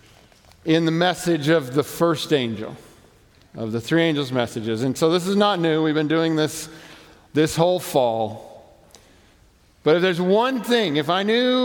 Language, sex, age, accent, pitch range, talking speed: English, male, 50-69, American, 125-210 Hz, 170 wpm